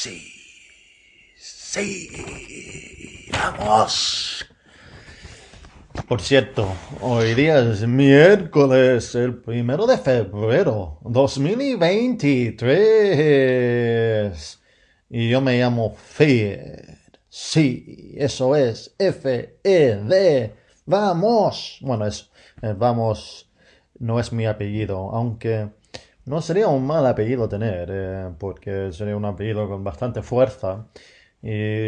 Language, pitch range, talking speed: English, 110-135 Hz, 90 wpm